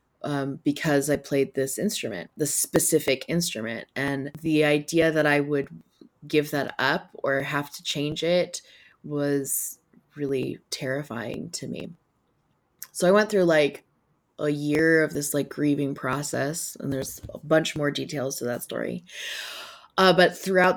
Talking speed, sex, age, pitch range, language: 150 wpm, female, 20-39, 140-160 Hz, English